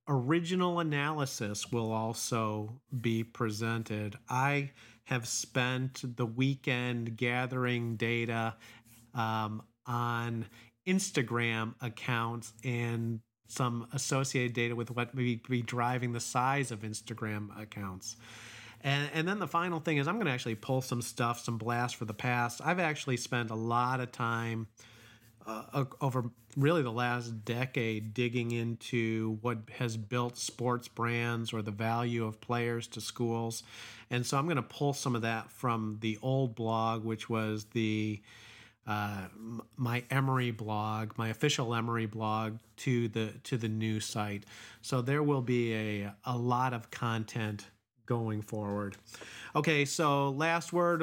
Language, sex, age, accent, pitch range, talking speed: English, male, 40-59, American, 115-130 Hz, 145 wpm